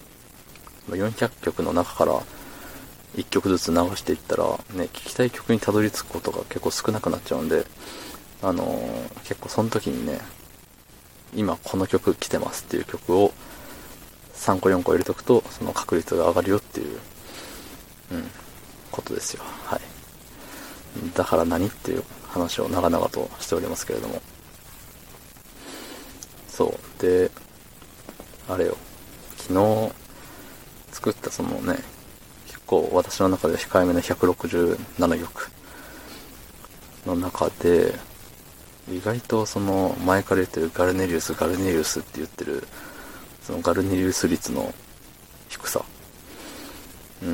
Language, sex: Japanese, male